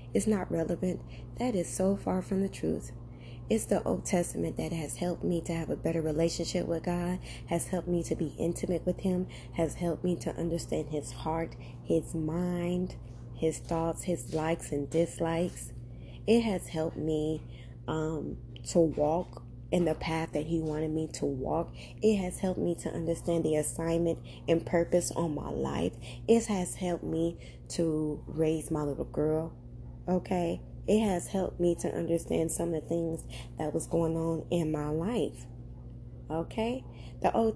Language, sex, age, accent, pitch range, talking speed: English, female, 20-39, American, 120-180 Hz, 170 wpm